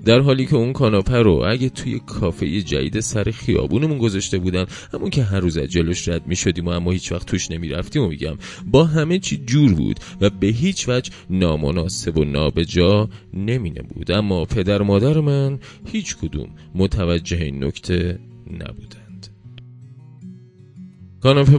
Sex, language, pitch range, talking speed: male, Persian, 90-120 Hz, 160 wpm